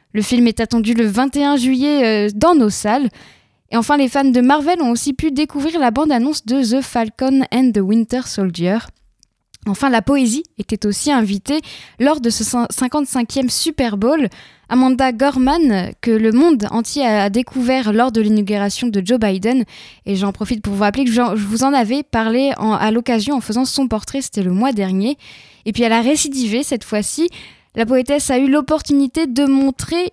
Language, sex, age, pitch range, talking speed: French, female, 10-29, 220-275 Hz, 185 wpm